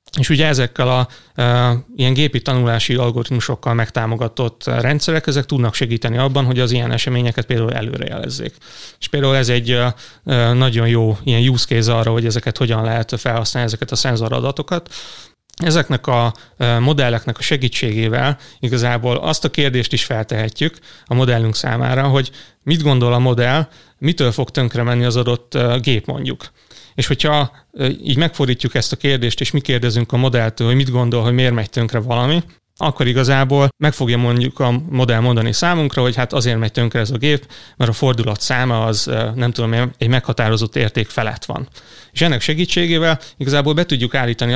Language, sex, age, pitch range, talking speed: Hungarian, male, 30-49, 120-140 Hz, 165 wpm